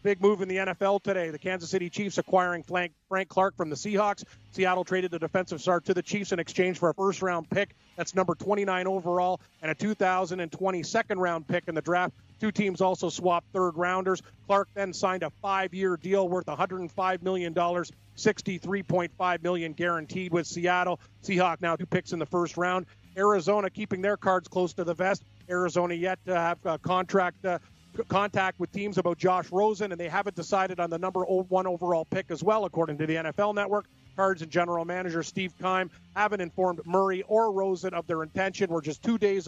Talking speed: 195 wpm